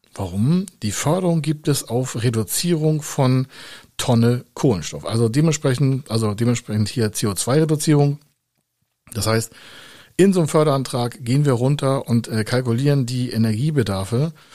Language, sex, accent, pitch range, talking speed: German, male, German, 110-140 Hz, 125 wpm